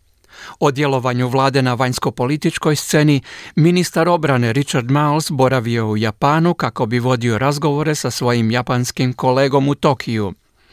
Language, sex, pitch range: Croatian, male, 125-150 Hz